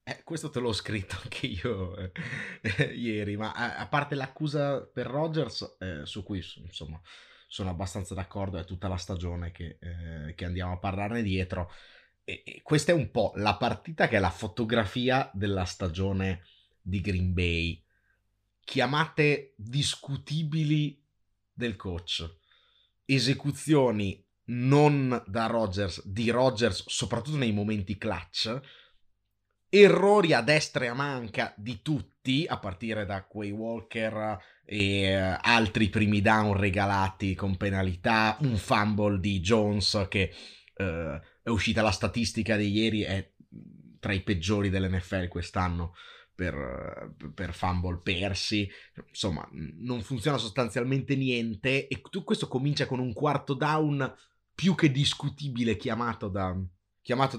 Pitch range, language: 95-125 Hz, Italian